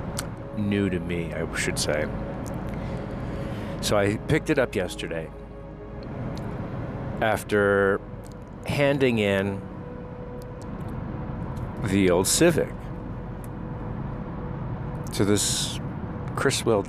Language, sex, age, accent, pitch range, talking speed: English, male, 50-69, American, 100-125 Hz, 75 wpm